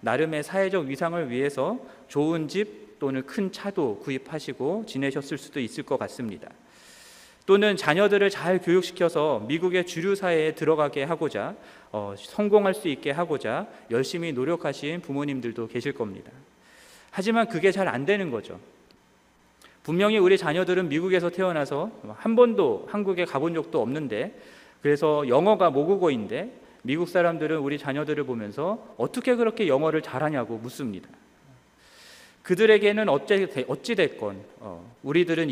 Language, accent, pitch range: Korean, native, 140-185 Hz